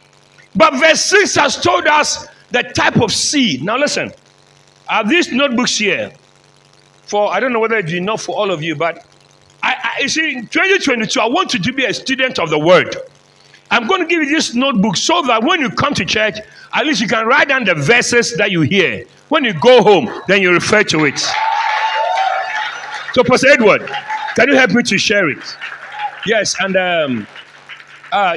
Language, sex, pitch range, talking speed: English, male, 190-285 Hz, 195 wpm